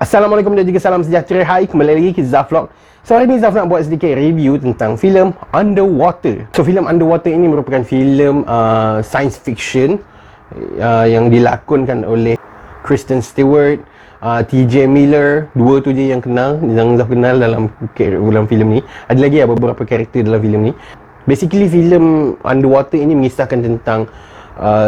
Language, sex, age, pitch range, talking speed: Malay, male, 30-49, 115-155 Hz, 160 wpm